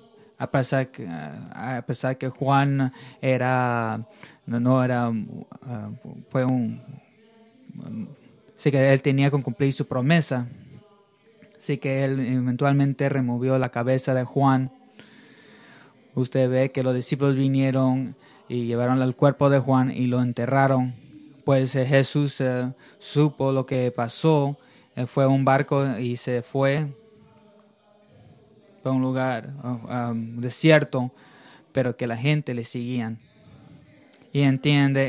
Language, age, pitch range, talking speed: Spanish, 20-39, 125-140 Hz, 125 wpm